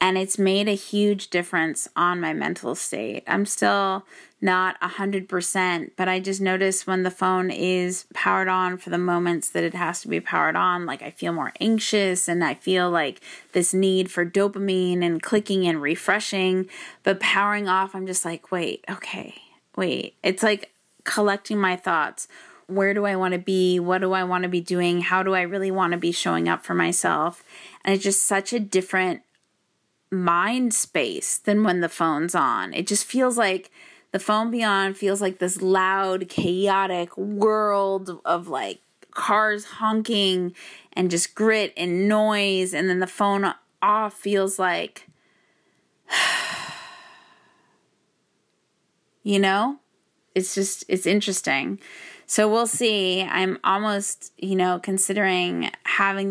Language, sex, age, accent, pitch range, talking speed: English, female, 20-39, American, 180-205 Hz, 150 wpm